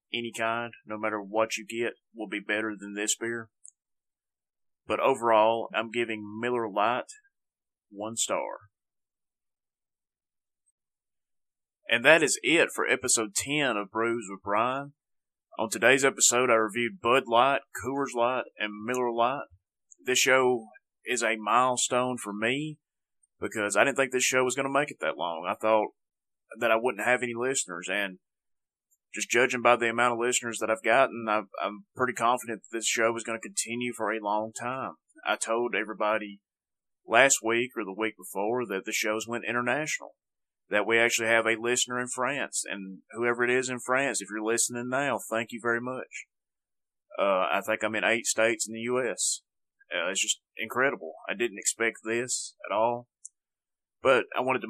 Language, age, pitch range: English, 30-49, 110-125 Hz